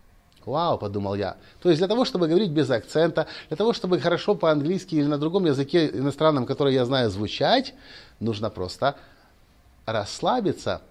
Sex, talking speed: male, 155 wpm